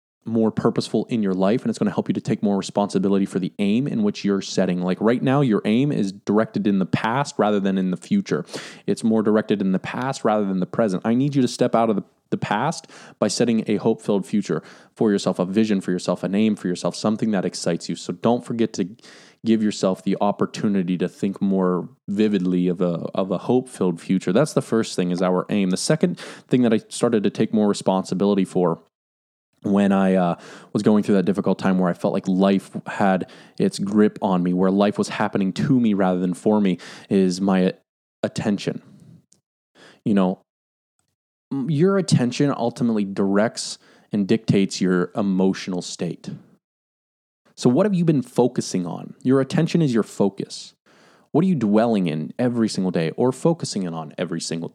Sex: male